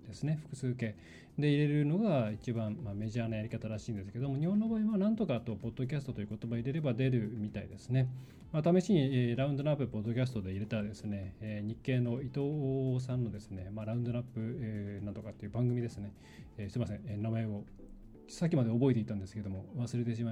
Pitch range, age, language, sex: 115-150 Hz, 20-39, Japanese, male